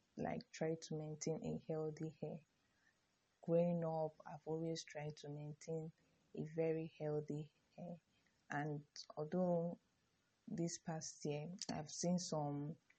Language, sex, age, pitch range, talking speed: English, female, 20-39, 155-180 Hz, 120 wpm